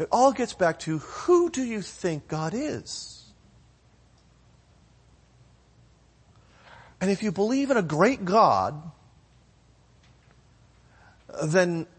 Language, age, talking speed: English, 40-59, 100 wpm